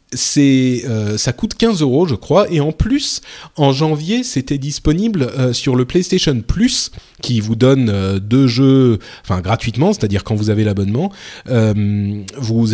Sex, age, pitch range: male, 30-49, 110-155 Hz